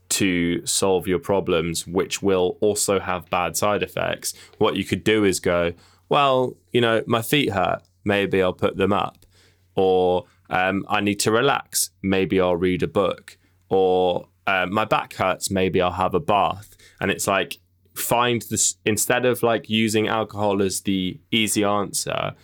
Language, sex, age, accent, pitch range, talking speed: English, male, 10-29, British, 90-110 Hz, 170 wpm